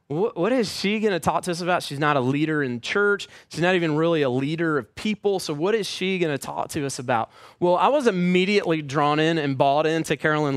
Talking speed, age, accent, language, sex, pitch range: 245 wpm, 30-49, American, English, male, 145-185 Hz